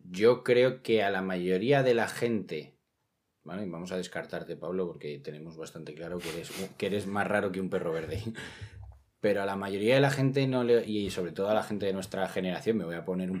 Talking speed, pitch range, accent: 230 wpm, 95-120 Hz, Spanish